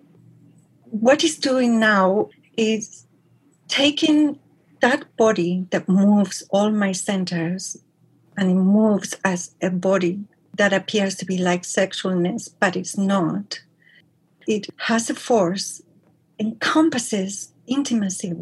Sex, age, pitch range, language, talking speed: female, 40-59, 180-225 Hz, English, 110 wpm